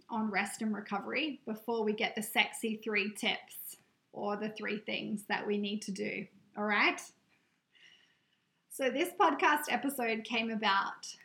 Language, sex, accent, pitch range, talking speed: English, female, Australian, 210-250 Hz, 150 wpm